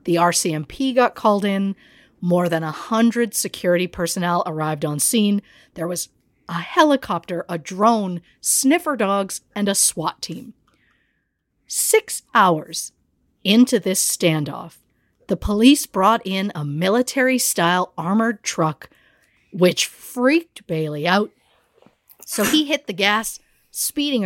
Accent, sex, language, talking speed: American, female, English, 120 wpm